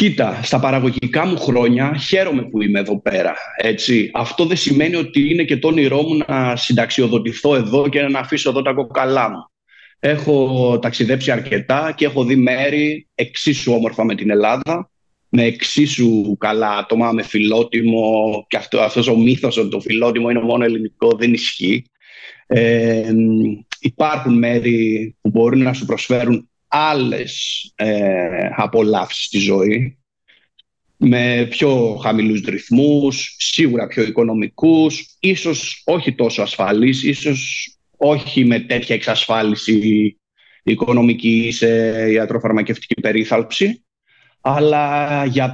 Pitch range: 115-140 Hz